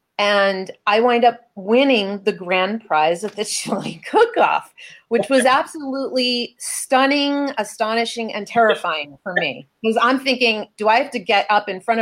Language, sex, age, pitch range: English, female, 30-49, 180-250 Hz